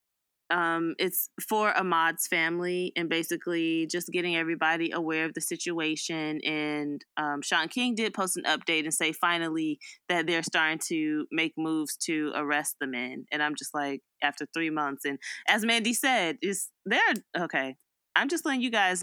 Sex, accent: female, American